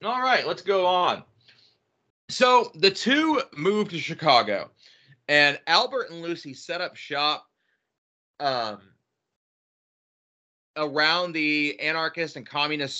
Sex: male